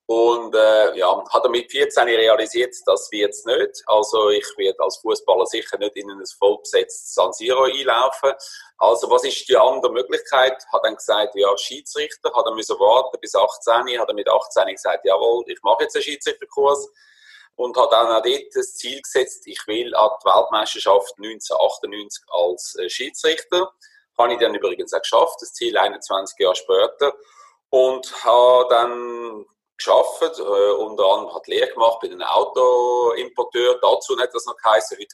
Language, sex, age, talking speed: German, male, 30-49, 170 wpm